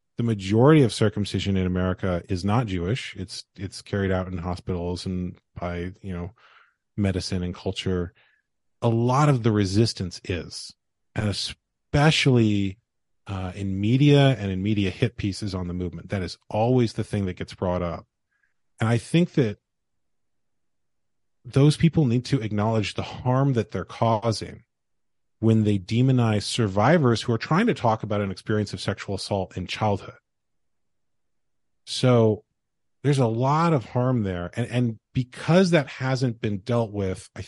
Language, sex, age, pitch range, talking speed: English, male, 30-49, 95-120 Hz, 155 wpm